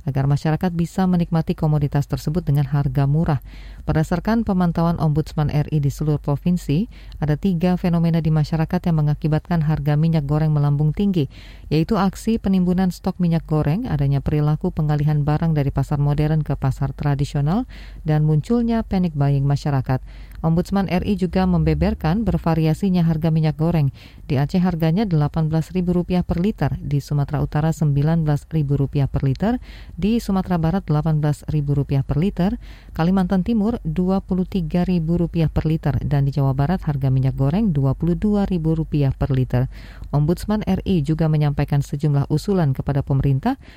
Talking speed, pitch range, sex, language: 135 wpm, 145-180 Hz, female, Indonesian